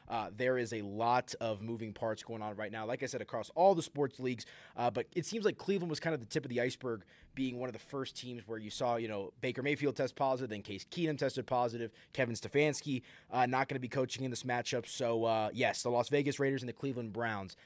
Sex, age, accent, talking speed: male, 20-39, American, 260 wpm